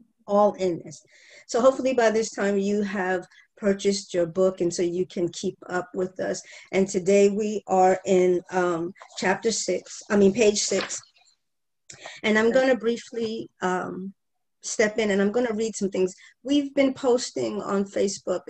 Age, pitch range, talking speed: 40-59, 180-215 Hz, 165 wpm